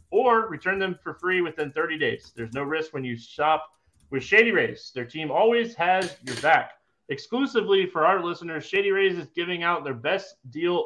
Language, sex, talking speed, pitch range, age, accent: English, male, 195 wpm, 125-180 Hz, 30-49, American